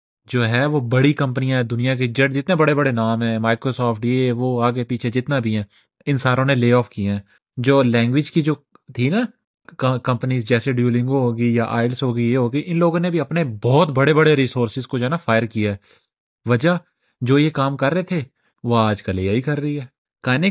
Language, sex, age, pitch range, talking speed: Urdu, male, 20-39, 120-160 Hz, 220 wpm